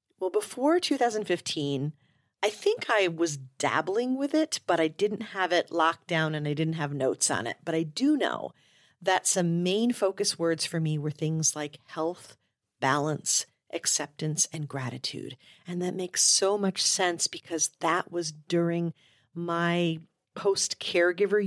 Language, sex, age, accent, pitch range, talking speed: English, female, 40-59, American, 150-195 Hz, 155 wpm